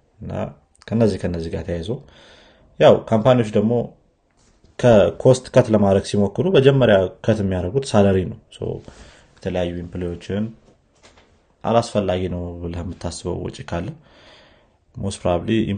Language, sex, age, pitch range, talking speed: Amharic, male, 30-49, 85-110 Hz, 95 wpm